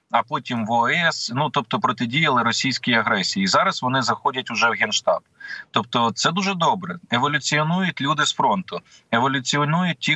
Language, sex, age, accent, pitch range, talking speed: Ukrainian, male, 20-39, native, 120-155 Hz, 155 wpm